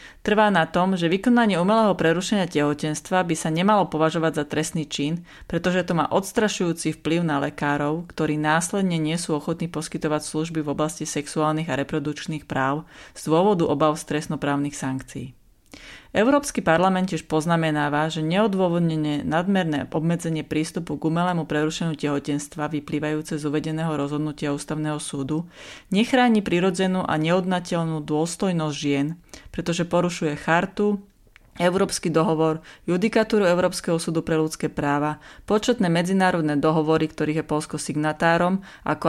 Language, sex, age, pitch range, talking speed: Slovak, female, 30-49, 150-180 Hz, 130 wpm